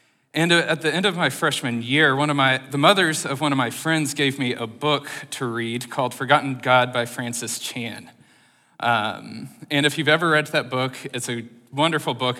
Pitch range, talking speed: 120-145 Hz, 205 wpm